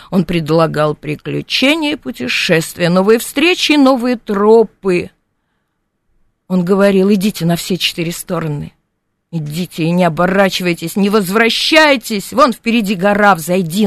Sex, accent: female, native